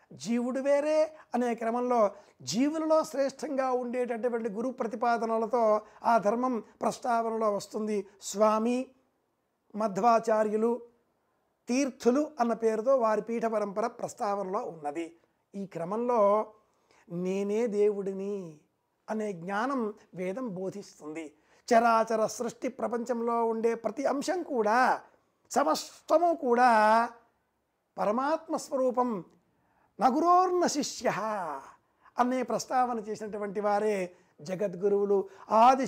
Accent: native